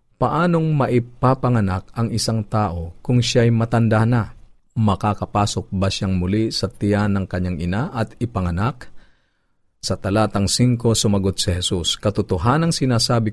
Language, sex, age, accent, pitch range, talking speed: Filipino, male, 50-69, native, 95-120 Hz, 125 wpm